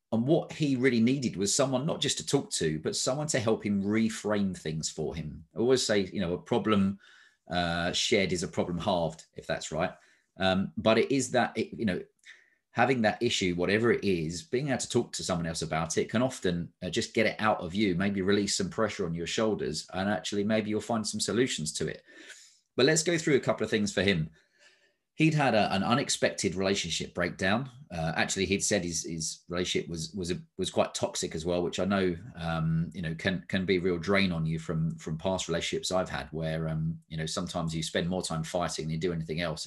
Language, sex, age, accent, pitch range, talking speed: English, male, 30-49, British, 80-110 Hz, 220 wpm